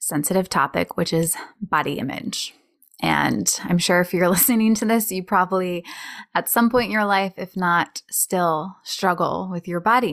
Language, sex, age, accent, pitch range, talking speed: English, female, 20-39, American, 180-235 Hz, 170 wpm